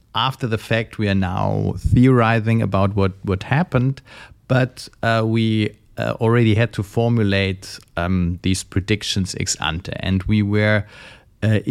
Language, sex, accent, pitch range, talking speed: Danish, male, German, 95-120 Hz, 145 wpm